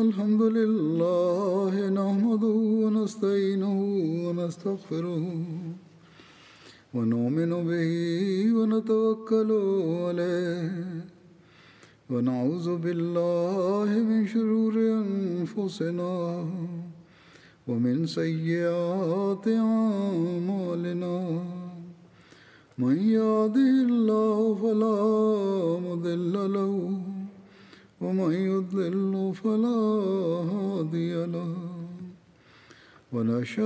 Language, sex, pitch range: Bulgarian, male, 170-215 Hz